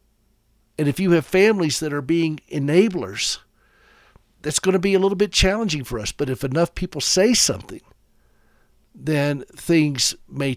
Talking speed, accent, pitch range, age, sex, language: 160 wpm, American, 115-155 Hz, 50-69, male, English